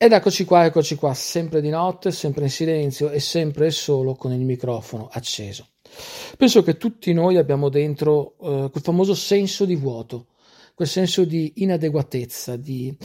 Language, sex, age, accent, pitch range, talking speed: Italian, male, 50-69, native, 135-185 Hz, 165 wpm